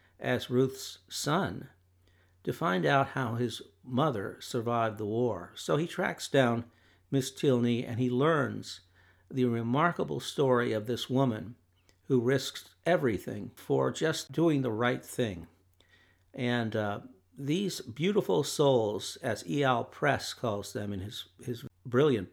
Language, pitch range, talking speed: English, 100-135 Hz, 135 wpm